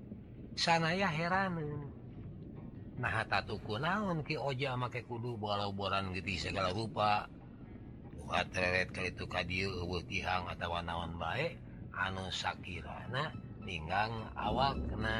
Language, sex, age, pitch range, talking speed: Indonesian, male, 40-59, 100-145 Hz, 105 wpm